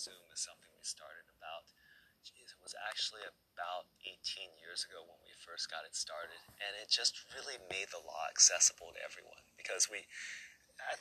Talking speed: 180 wpm